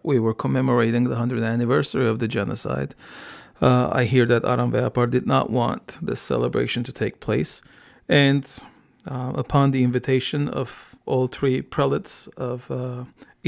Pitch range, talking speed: 120-140 Hz, 150 wpm